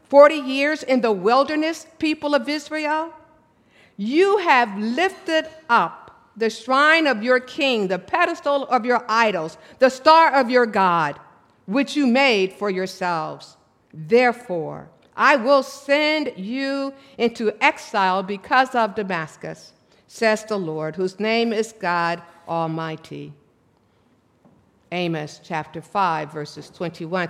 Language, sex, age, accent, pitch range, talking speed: English, female, 50-69, American, 185-280 Hz, 120 wpm